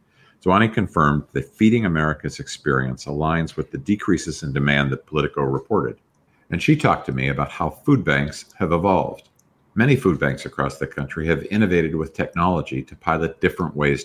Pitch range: 70-90 Hz